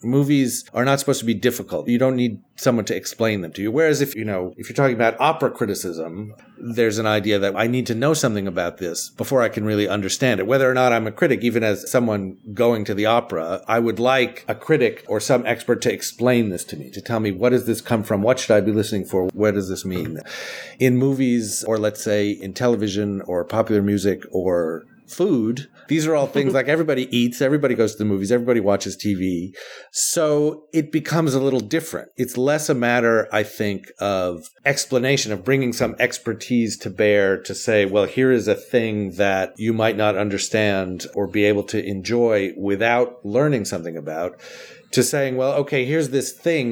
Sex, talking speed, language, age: male, 210 wpm, English, 40-59